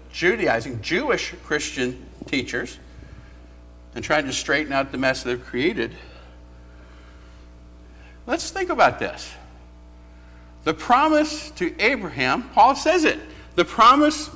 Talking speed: 105 wpm